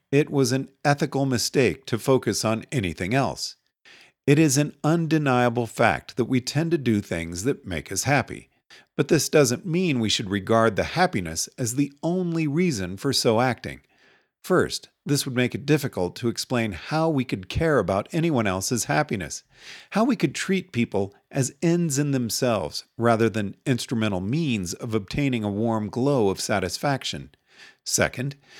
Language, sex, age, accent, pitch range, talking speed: English, male, 50-69, American, 110-150 Hz, 165 wpm